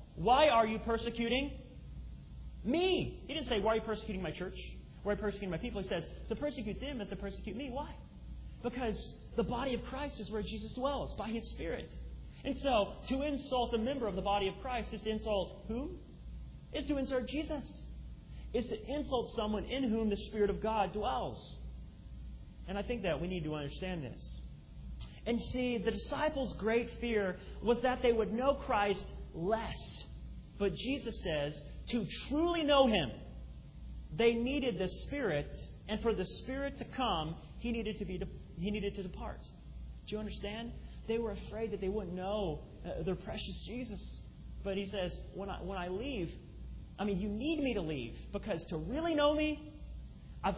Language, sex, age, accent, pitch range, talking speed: English, male, 30-49, American, 180-245 Hz, 185 wpm